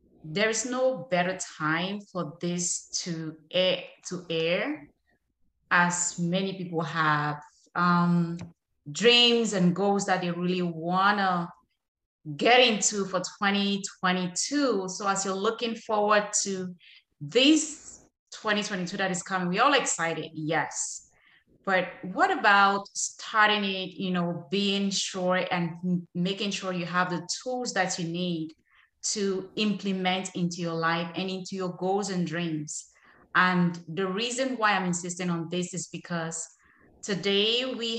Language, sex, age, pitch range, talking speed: English, female, 20-39, 175-210 Hz, 130 wpm